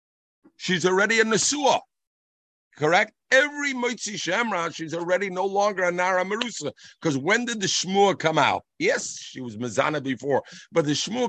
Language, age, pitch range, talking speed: English, 50-69, 140-210 Hz, 160 wpm